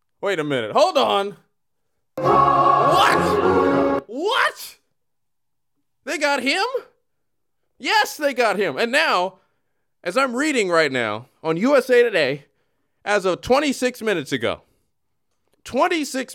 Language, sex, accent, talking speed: English, male, American, 110 wpm